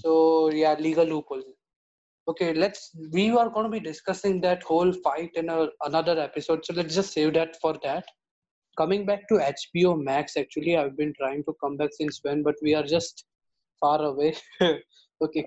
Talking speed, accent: 180 wpm, Indian